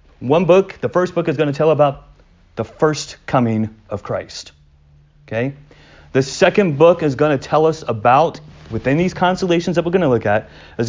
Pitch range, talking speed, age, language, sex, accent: 120-160 Hz, 195 wpm, 40-59, English, male, American